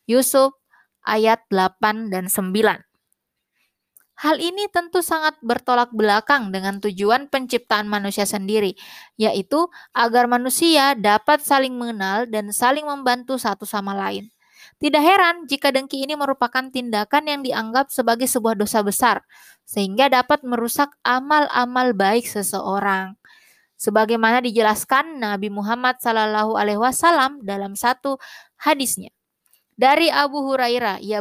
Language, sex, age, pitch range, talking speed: Indonesian, female, 20-39, 215-285 Hz, 115 wpm